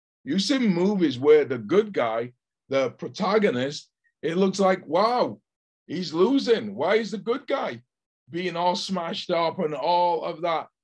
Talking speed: 155 wpm